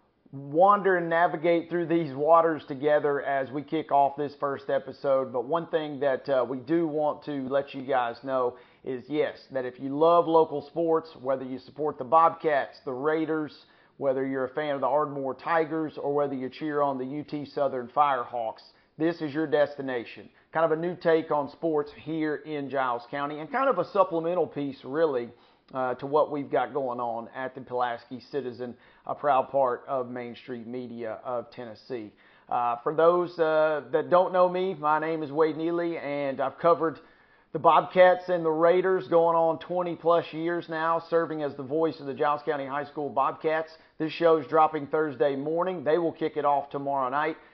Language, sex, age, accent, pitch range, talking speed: English, male, 40-59, American, 135-160 Hz, 190 wpm